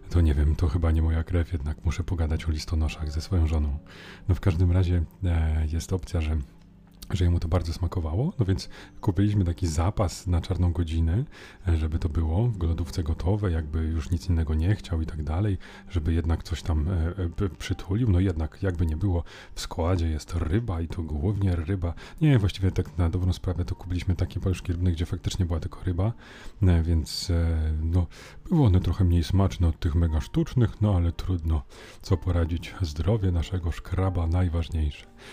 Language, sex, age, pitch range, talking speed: Polish, male, 30-49, 85-95 Hz, 190 wpm